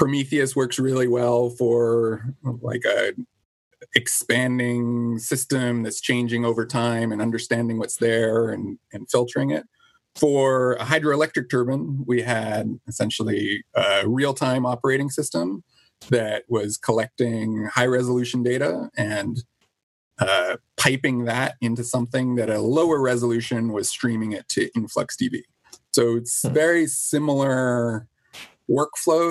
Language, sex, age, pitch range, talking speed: English, male, 30-49, 115-140 Hz, 115 wpm